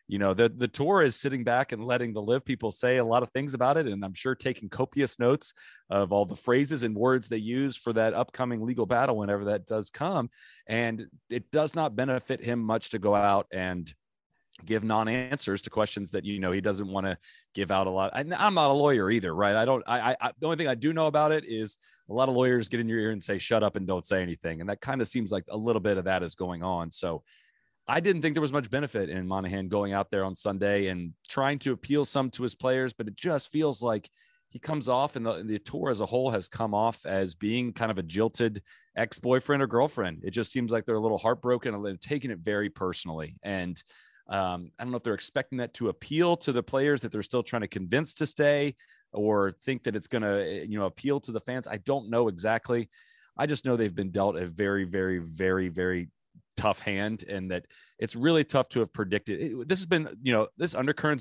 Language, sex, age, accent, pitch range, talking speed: English, male, 30-49, American, 100-130 Hz, 245 wpm